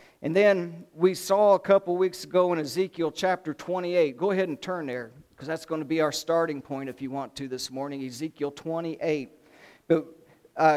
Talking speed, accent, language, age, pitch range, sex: 200 wpm, American, English, 50-69, 150-175 Hz, male